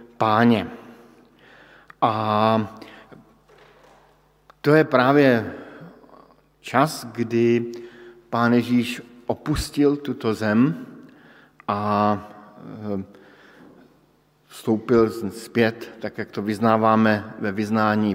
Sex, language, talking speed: male, Slovak, 70 wpm